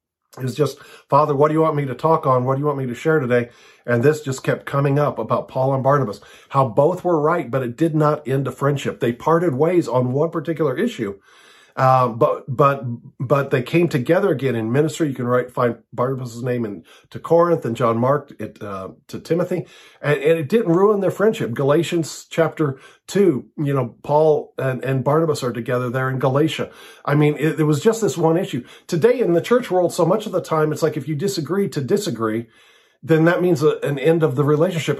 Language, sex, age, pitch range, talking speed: English, male, 50-69, 130-165 Hz, 220 wpm